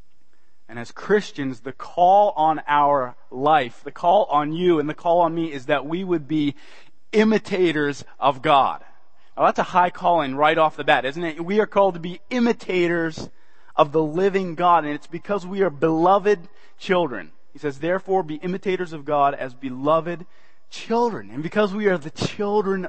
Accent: American